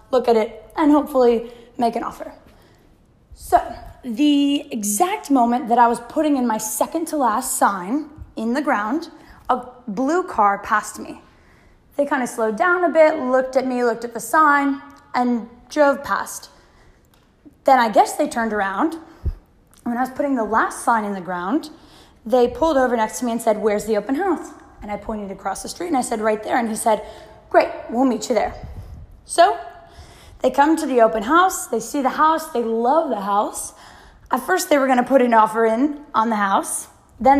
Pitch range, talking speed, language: 225-300 Hz, 195 wpm, English